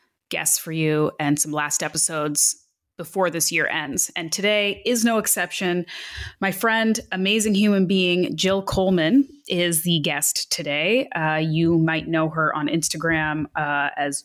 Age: 20-39